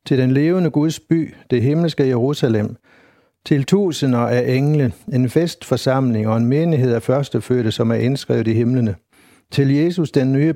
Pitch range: 120-150 Hz